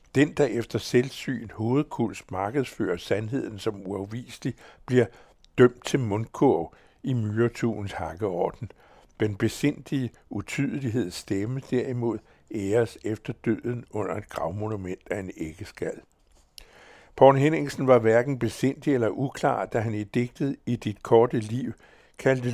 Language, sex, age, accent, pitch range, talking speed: Danish, male, 60-79, American, 105-130 Hz, 120 wpm